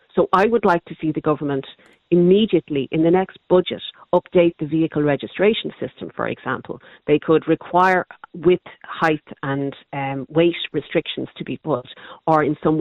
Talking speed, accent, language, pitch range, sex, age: 165 wpm, Irish, English, 145-175 Hz, female, 40-59